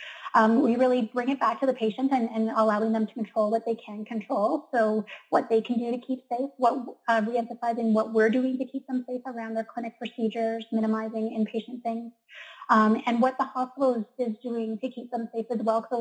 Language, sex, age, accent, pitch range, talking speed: English, female, 30-49, American, 220-240 Hz, 220 wpm